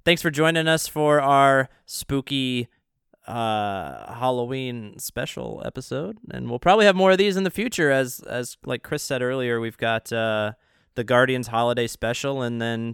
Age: 20-39